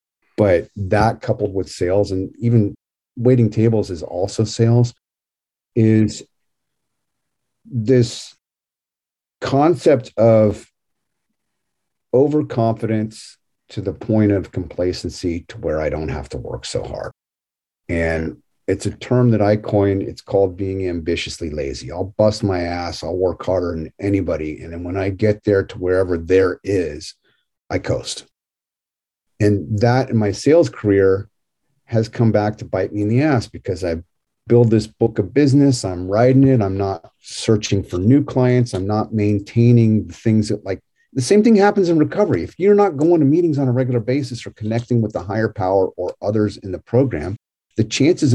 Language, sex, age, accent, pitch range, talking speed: English, male, 50-69, American, 100-125 Hz, 165 wpm